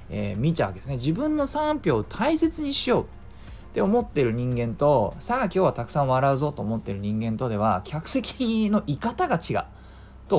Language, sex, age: Japanese, male, 20-39